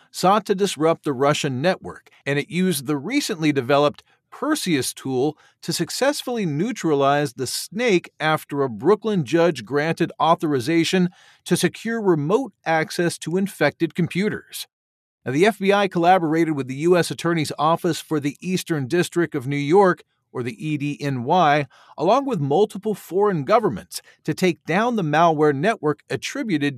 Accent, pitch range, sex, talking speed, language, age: American, 145-185 Hz, male, 140 wpm, English, 40-59